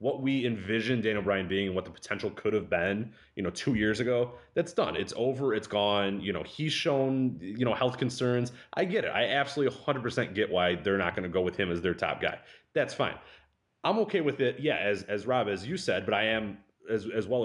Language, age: English, 30-49